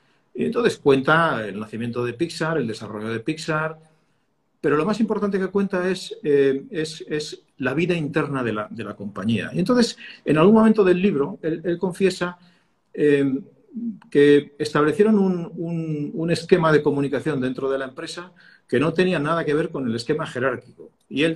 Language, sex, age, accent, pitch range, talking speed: Spanish, male, 50-69, Spanish, 125-170 Hz, 175 wpm